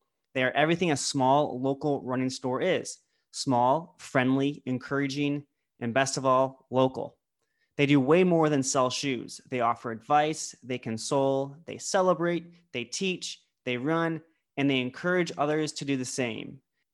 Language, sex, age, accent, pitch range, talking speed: English, male, 20-39, American, 130-155 Hz, 150 wpm